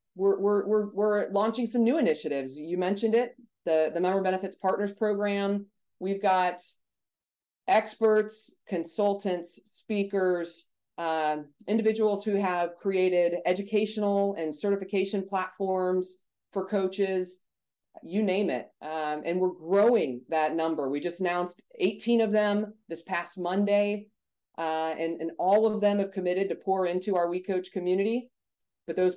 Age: 30-49